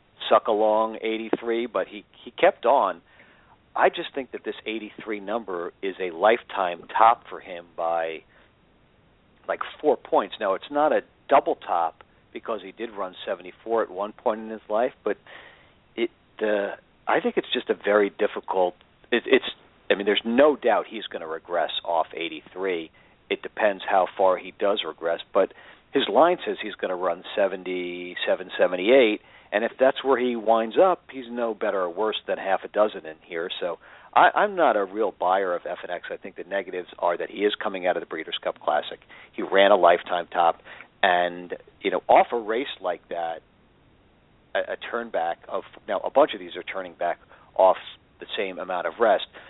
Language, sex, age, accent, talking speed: English, male, 50-69, American, 190 wpm